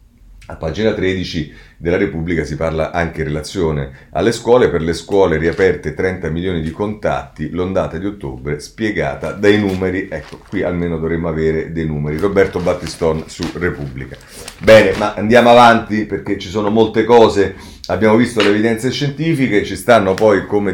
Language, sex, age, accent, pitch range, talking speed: Italian, male, 40-59, native, 90-120 Hz, 160 wpm